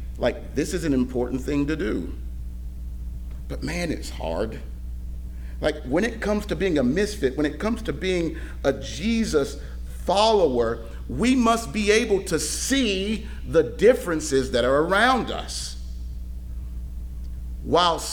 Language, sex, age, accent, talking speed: English, male, 40-59, American, 135 wpm